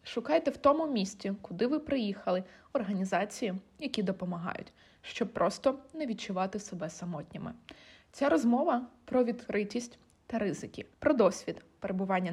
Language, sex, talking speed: Ukrainian, female, 120 wpm